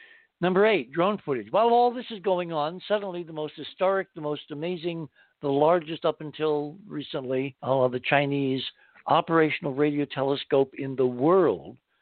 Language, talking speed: English, 160 wpm